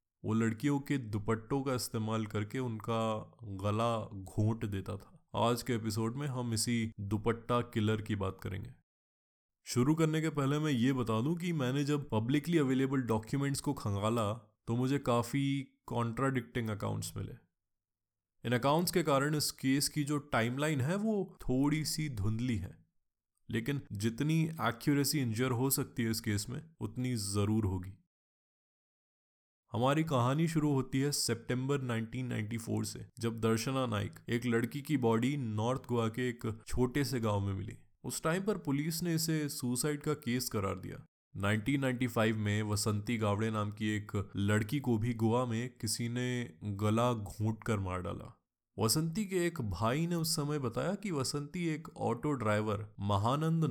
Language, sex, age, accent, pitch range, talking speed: Hindi, male, 20-39, native, 110-140 Hz, 160 wpm